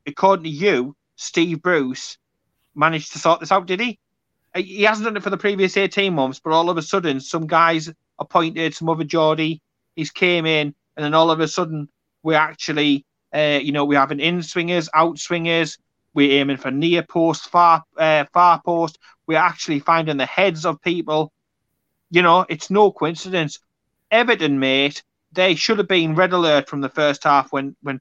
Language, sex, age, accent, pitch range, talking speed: English, male, 30-49, British, 140-170 Hz, 180 wpm